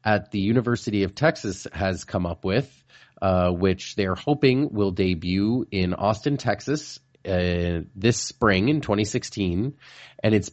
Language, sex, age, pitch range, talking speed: English, male, 30-49, 90-120 Hz, 140 wpm